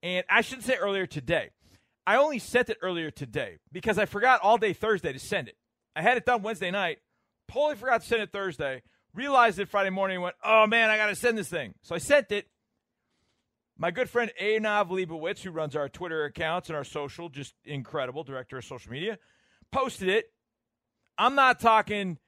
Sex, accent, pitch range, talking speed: male, American, 140-215 Hz, 200 wpm